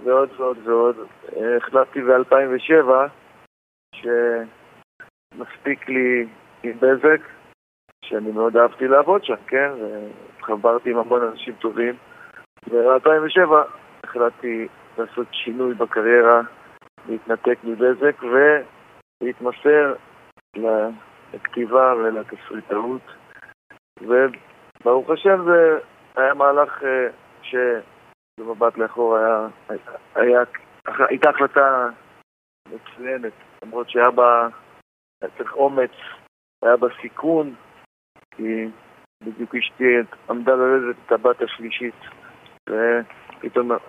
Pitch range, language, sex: 115-135 Hz, Hebrew, male